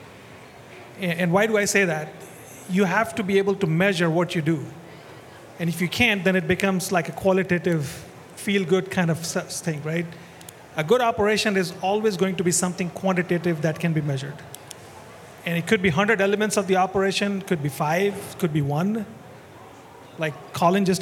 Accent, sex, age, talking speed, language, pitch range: Indian, male, 30-49, 180 wpm, English, 170-195 Hz